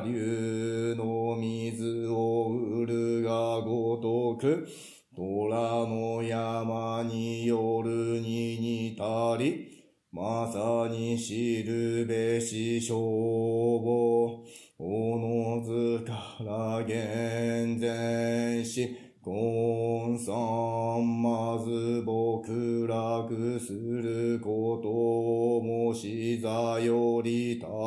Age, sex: 40-59, male